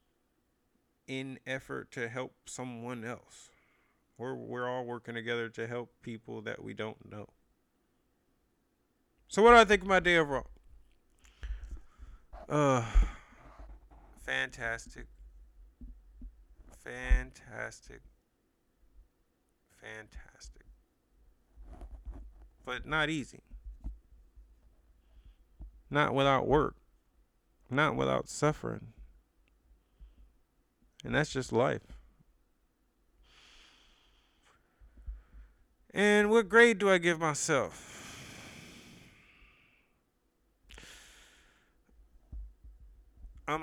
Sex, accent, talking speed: male, American, 70 wpm